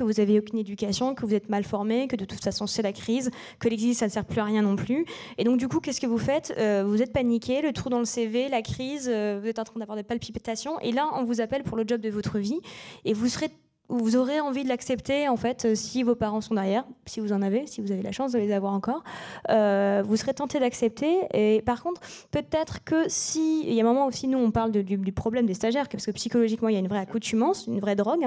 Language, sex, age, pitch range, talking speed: French, female, 20-39, 215-255 Hz, 280 wpm